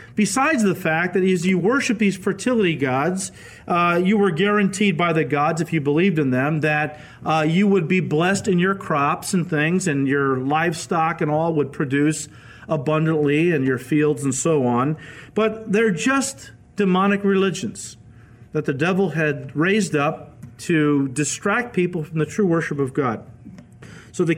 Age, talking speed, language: 40-59, 170 wpm, English